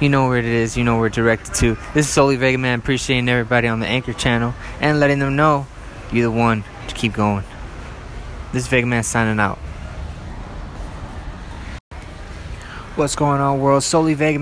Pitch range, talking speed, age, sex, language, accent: 110-140 Hz, 175 wpm, 20-39, male, English, American